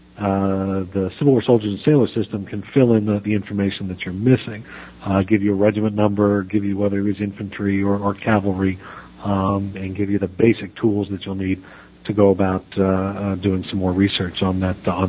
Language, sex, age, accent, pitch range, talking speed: English, male, 50-69, American, 95-105 Hz, 210 wpm